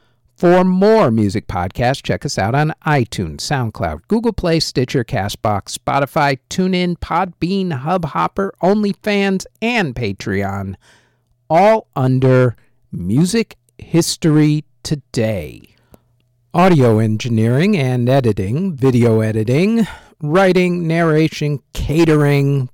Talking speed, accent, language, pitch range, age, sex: 90 wpm, American, English, 110-165 Hz, 50-69, male